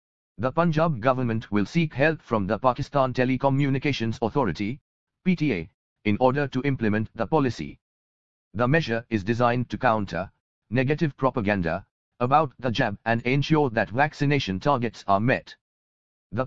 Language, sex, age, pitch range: English, male, 50-69, 110-140 Hz